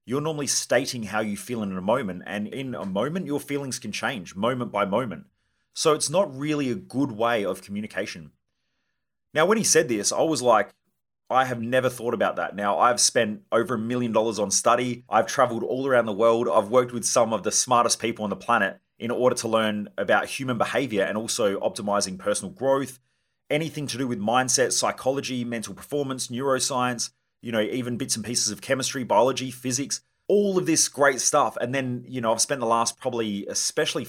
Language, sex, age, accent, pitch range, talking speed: English, male, 30-49, Australian, 100-125 Hz, 200 wpm